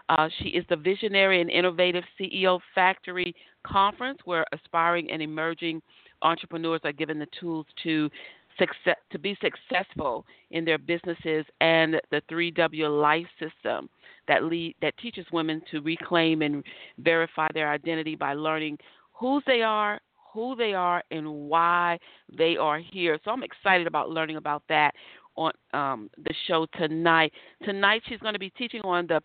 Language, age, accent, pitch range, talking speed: English, 40-59, American, 160-195 Hz, 150 wpm